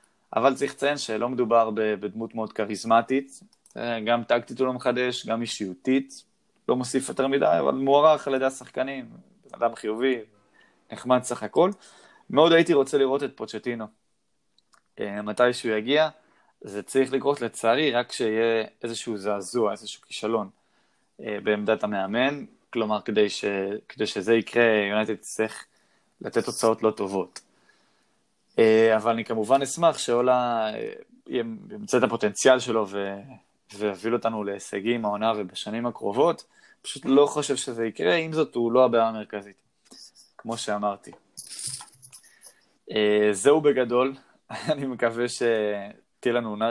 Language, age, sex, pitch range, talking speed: Hebrew, 20-39, male, 110-135 Hz, 130 wpm